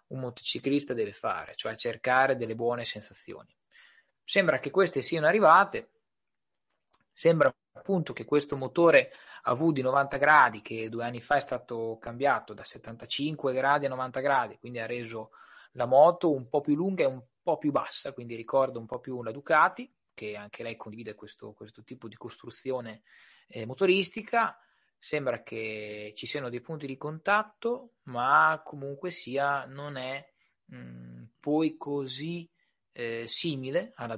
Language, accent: Italian, native